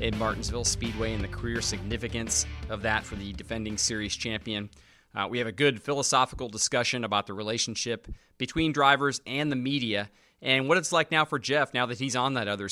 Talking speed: 200 wpm